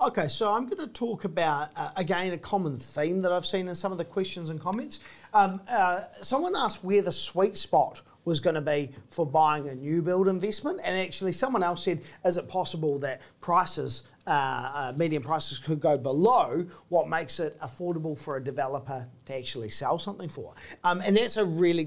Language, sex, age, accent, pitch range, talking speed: English, male, 40-59, Australian, 150-205 Hz, 205 wpm